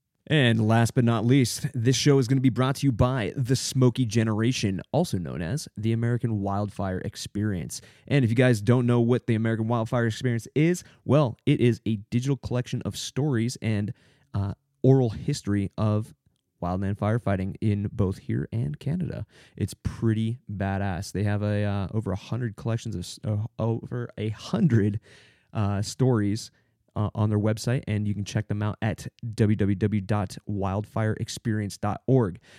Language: English